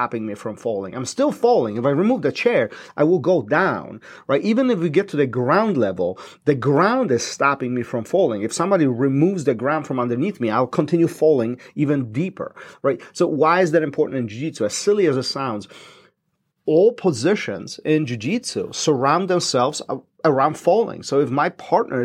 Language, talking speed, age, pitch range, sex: English, 190 wpm, 40-59, 125-170 Hz, male